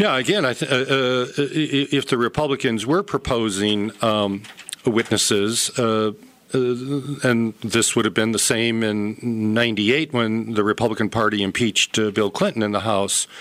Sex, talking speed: male, 155 wpm